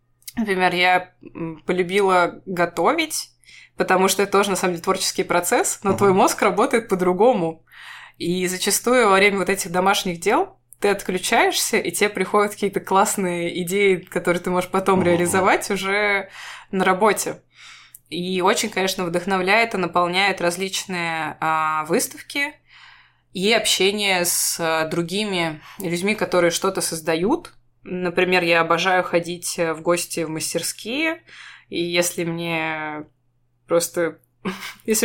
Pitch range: 175-205 Hz